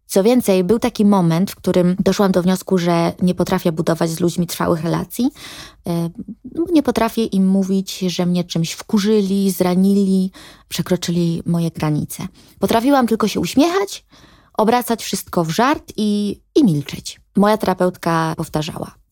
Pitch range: 175-225 Hz